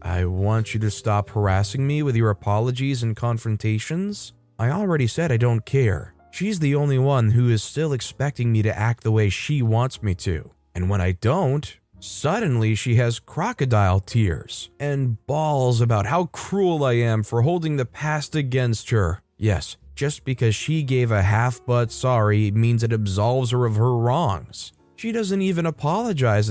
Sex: male